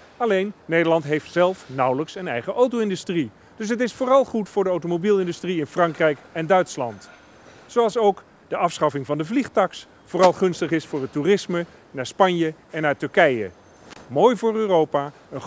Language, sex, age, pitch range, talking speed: Dutch, male, 40-59, 155-225 Hz, 165 wpm